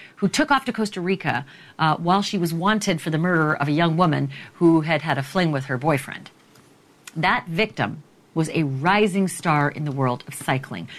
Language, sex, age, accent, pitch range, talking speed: English, female, 40-59, American, 140-200 Hz, 200 wpm